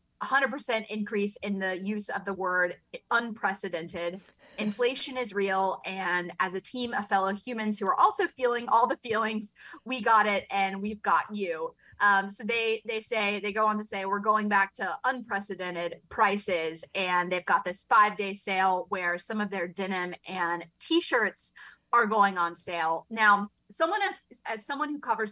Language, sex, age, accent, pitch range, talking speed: English, female, 20-39, American, 190-240 Hz, 180 wpm